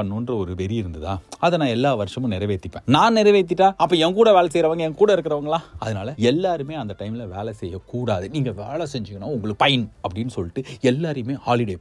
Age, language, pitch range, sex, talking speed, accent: 30-49, Tamil, 105-160 Hz, male, 170 wpm, native